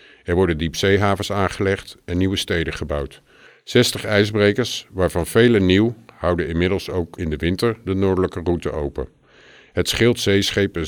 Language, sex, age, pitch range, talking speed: English, male, 50-69, 85-100 Hz, 145 wpm